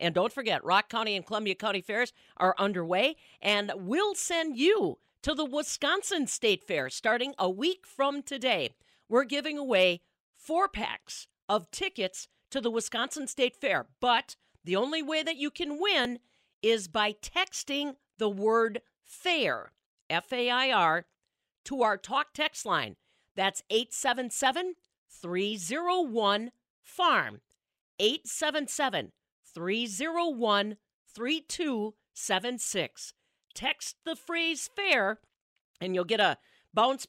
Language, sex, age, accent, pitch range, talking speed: English, female, 50-69, American, 210-295 Hz, 125 wpm